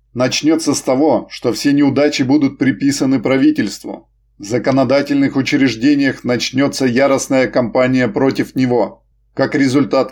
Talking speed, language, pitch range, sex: 115 wpm, Russian, 125-145 Hz, male